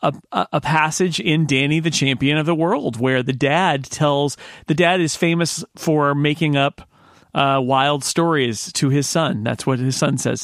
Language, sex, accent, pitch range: English, male, American, 130-160 Hz